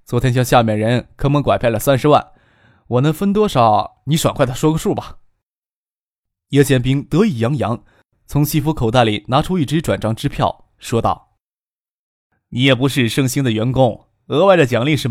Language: Chinese